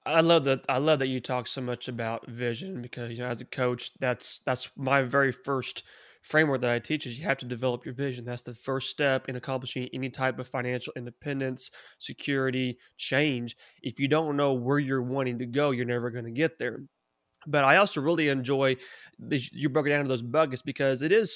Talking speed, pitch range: 220 wpm, 130-150 Hz